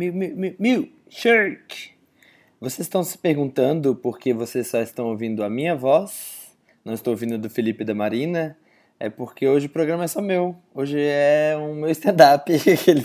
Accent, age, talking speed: Brazilian, 20-39, 165 wpm